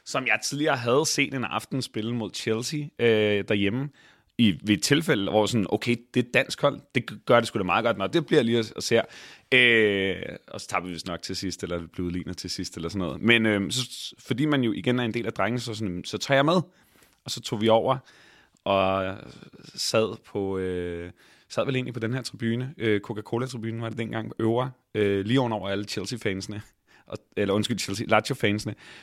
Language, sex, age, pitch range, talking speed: Danish, male, 30-49, 105-125 Hz, 215 wpm